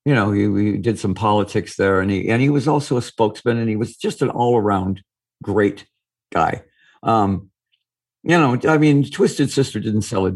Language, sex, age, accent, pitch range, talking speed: English, male, 60-79, American, 100-130 Hz, 195 wpm